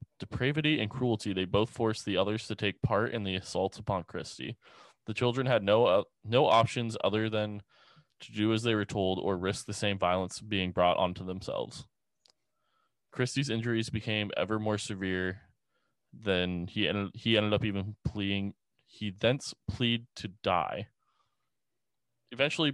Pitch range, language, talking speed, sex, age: 95-120 Hz, English, 155 wpm, male, 20-39